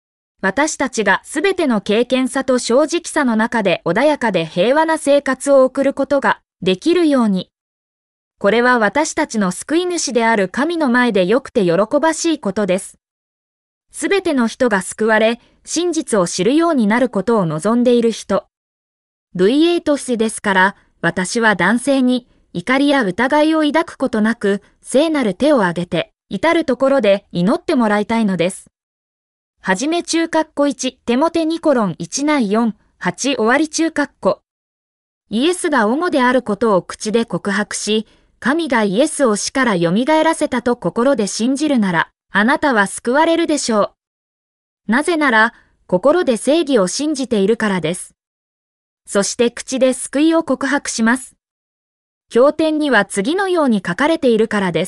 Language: English